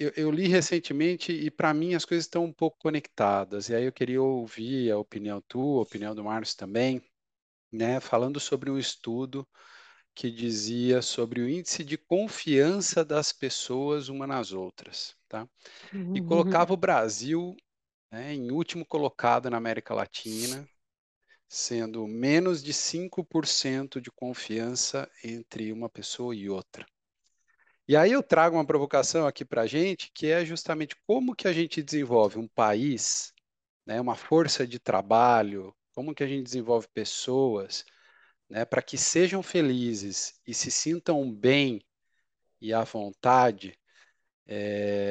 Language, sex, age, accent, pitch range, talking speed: Portuguese, male, 40-59, Brazilian, 115-165 Hz, 145 wpm